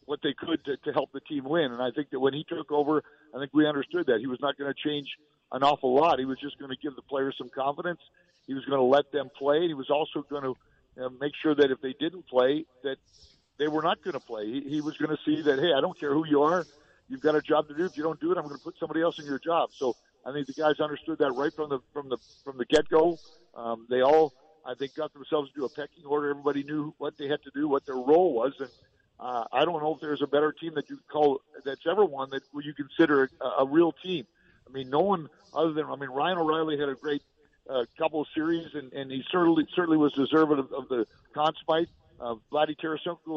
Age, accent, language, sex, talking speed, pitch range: 50-69, American, English, male, 265 wpm, 140-160 Hz